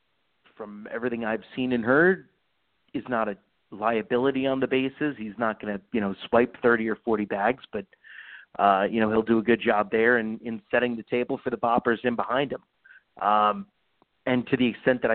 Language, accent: English, American